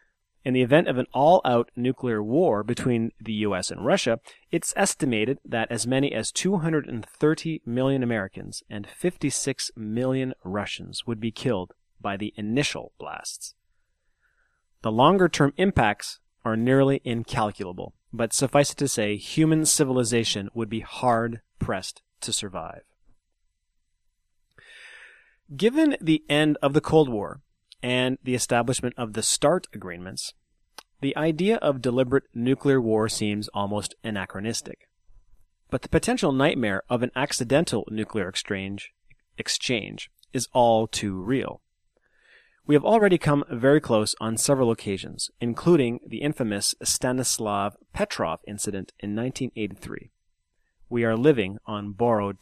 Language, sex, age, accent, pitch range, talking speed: English, male, 30-49, American, 105-140 Hz, 125 wpm